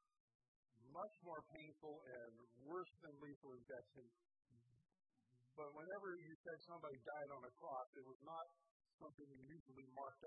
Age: 50-69